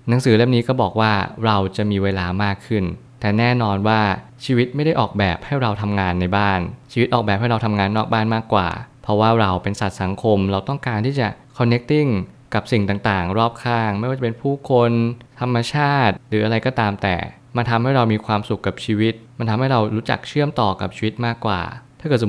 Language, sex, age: Thai, male, 20-39